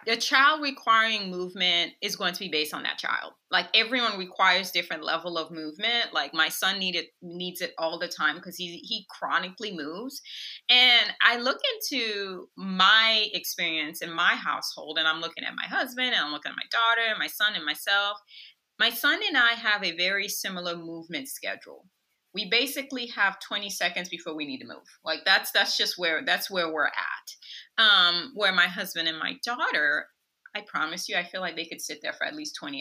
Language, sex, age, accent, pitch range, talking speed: English, female, 30-49, American, 175-240 Hz, 200 wpm